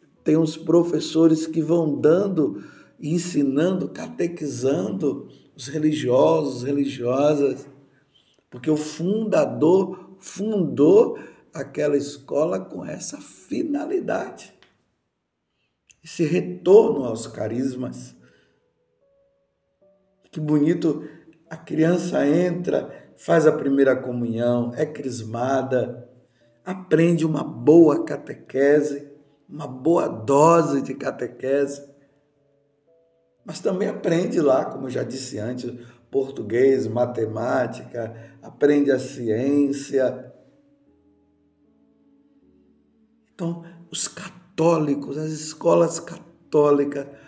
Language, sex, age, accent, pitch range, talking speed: Portuguese, male, 50-69, Brazilian, 125-160 Hz, 80 wpm